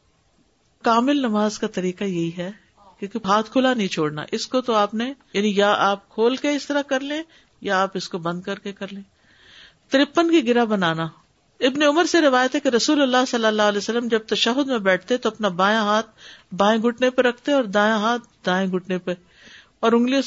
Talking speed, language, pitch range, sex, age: 200 wpm, Urdu, 200-260 Hz, female, 50-69